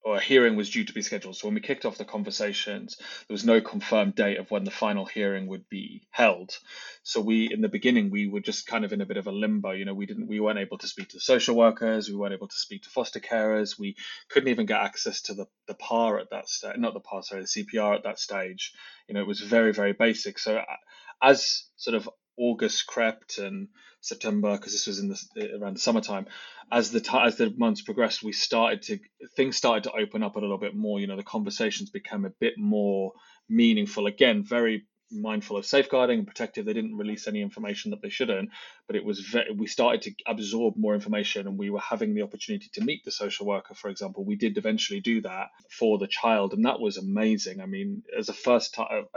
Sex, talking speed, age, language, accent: male, 235 wpm, 20-39, English, British